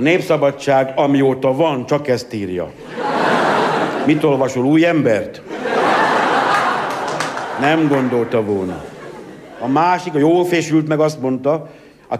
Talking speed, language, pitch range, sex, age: 110 wpm, Hungarian, 140-180 Hz, male, 60-79